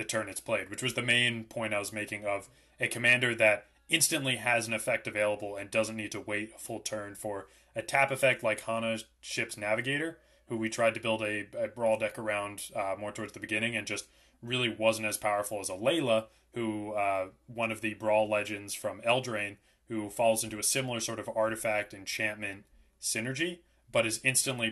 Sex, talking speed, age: male, 200 wpm, 20-39